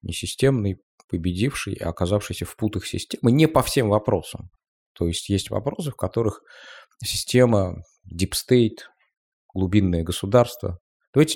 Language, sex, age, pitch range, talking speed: Russian, male, 20-39, 85-105 Hz, 125 wpm